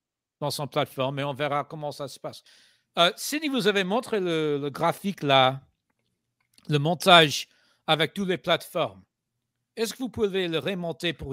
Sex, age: male, 60-79